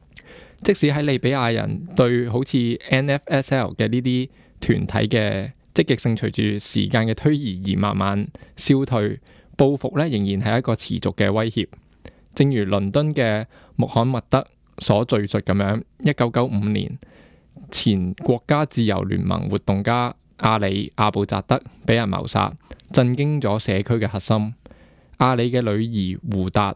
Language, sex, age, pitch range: Chinese, male, 20-39, 105-130 Hz